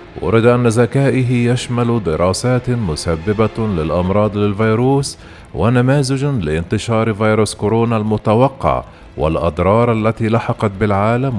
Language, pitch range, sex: Arabic, 100-125 Hz, male